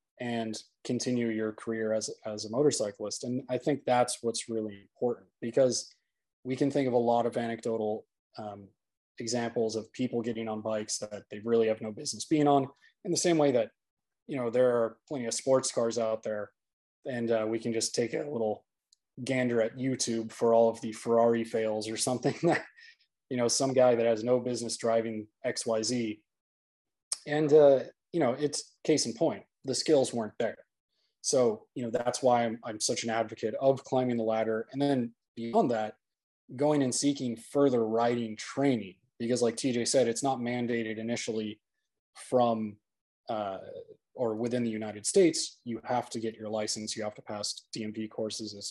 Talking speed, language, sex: 180 wpm, English, male